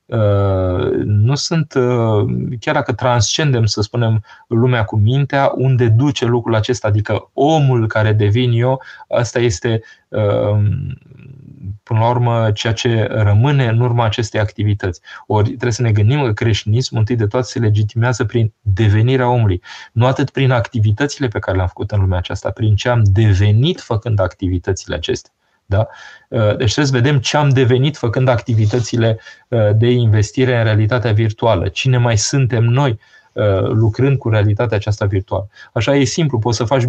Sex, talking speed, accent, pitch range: male, 155 wpm, native, 105-125 Hz